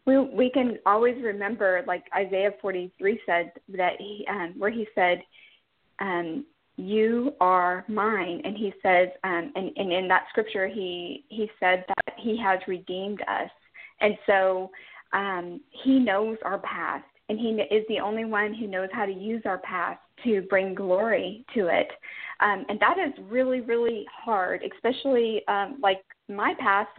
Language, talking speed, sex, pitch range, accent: English, 160 wpm, female, 195-235 Hz, American